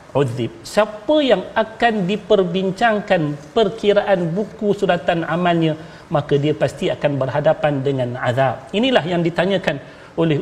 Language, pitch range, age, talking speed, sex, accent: Malayalam, 155-200 Hz, 40-59, 115 wpm, male, Indonesian